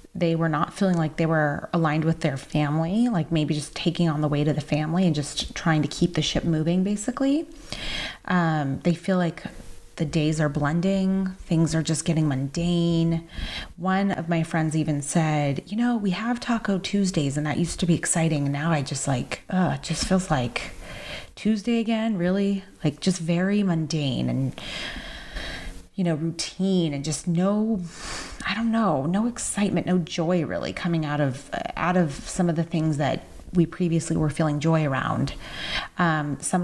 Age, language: 30-49, English